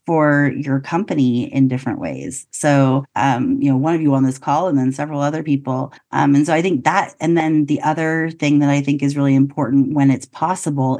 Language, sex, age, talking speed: English, female, 30-49, 225 wpm